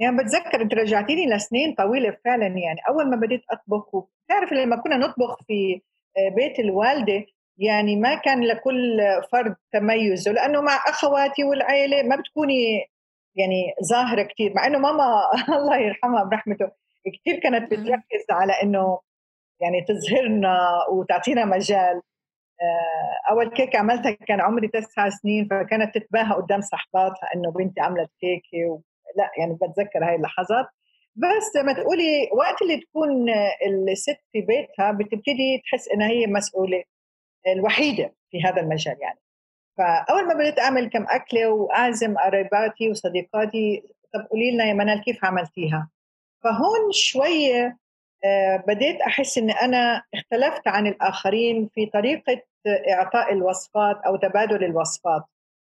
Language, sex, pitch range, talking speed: Arabic, female, 190-260 Hz, 130 wpm